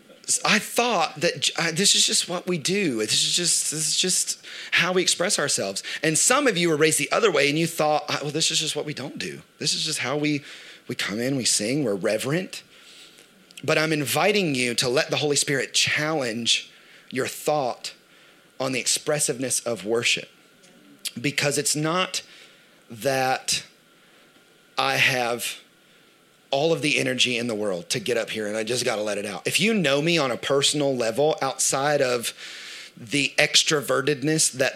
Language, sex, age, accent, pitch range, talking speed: English, male, 30-49, American, 125-155 Hz, 185 wpm